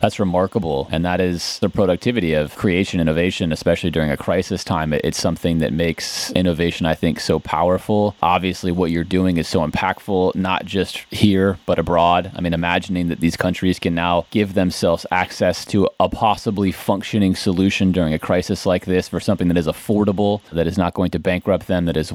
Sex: male